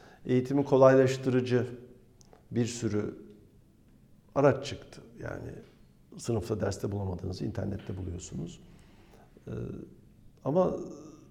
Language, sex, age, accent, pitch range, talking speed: Turkish, male, 50-69, native, 100-130 Hz, 75 wpm